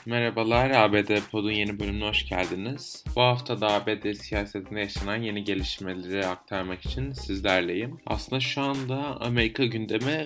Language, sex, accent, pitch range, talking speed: Turkish, male, native, 100-115 Hz, 135 wpm